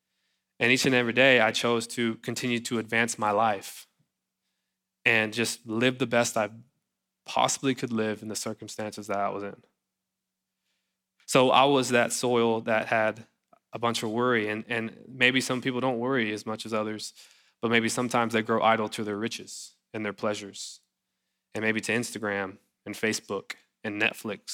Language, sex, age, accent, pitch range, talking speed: English, male, 20-39, American, 110-125 Hz, 175 wpm